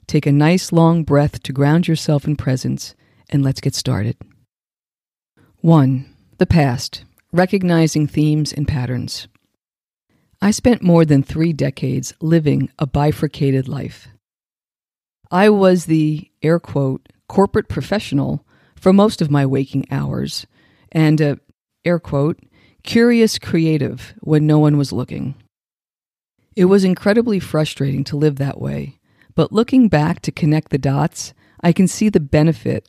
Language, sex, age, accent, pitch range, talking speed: English, female, 50-69, American, 140-175 Hz, 135 wpm